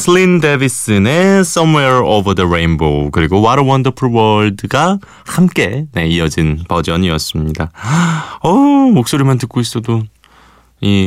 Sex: male